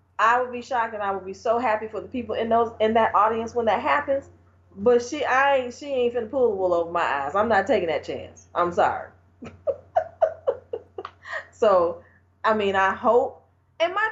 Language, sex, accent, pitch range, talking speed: English, female, American, 190-280 Hz, 205 wpm